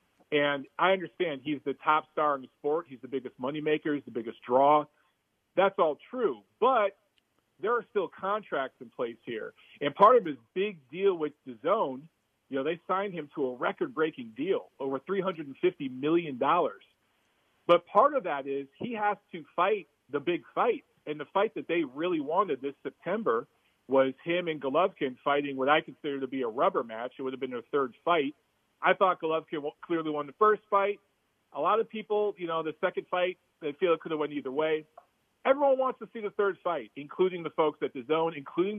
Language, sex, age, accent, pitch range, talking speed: English, male, 40-59, American, 145-195 Hz, 200 wpm